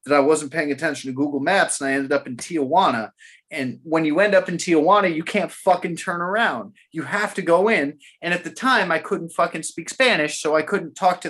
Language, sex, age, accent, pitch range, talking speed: English, male, 20-39, American, 125-165 Hz, 240 wpm